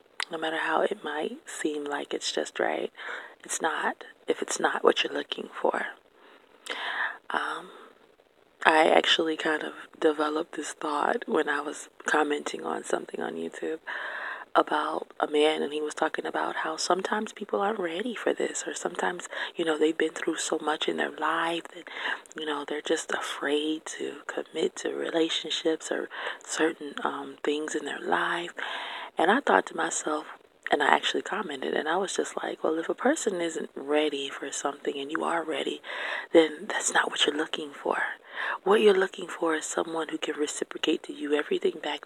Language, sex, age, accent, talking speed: English, female, 30-49, American, 180 wpm